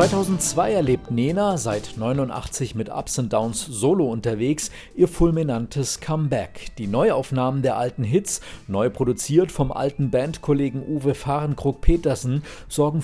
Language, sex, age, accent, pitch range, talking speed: German, male, 40-59, German, 120-150 Hz, 125 wpm